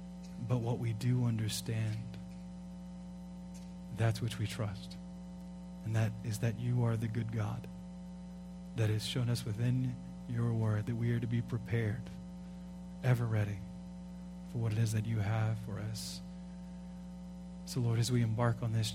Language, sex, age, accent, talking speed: English, male, 40-59, American, 155 wpm